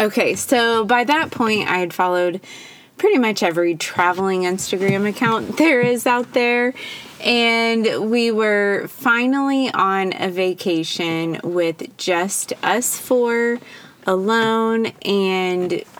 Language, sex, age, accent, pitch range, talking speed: English, female, 20-39, American, 190-245 Hz, 115 wpm